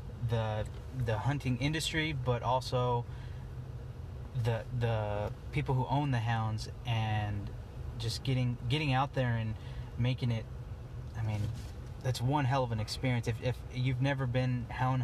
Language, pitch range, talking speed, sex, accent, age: English, 115-130 Hz, 145 wpm, male, American, 20-39